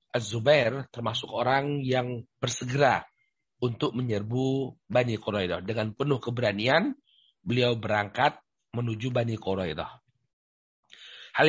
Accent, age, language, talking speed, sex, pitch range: native, 50-69, Indonesian, 95 wpm, male, 120-150 Hz